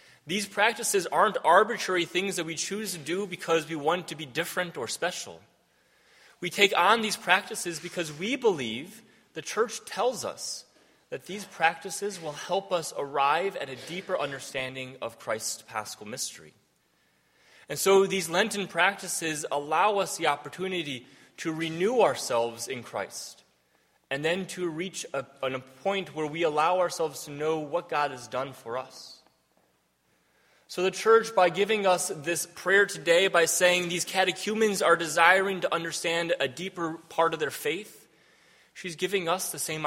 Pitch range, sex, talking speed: 150-185 Hz, male, 160 wpm